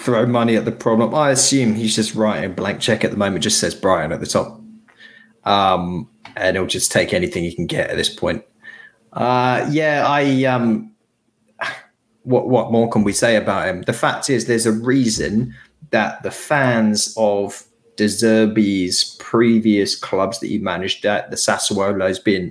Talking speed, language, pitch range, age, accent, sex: 180 wpm, English, 100-115 Hz, 20-39, British, male